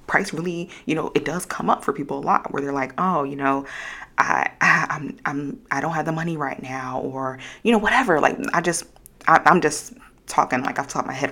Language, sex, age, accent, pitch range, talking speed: English, female, 20-39, American, 140-180 Hz, 255 wpm